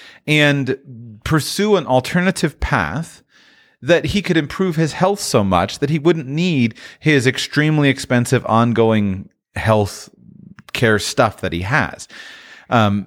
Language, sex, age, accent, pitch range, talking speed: English, male, 30-49, American, 100-135 Hz, 130 wpm